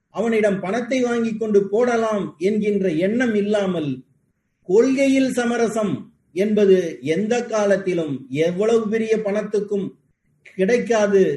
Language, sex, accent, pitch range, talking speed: Tamil, male, native, 175-225 Hz, 90 wpm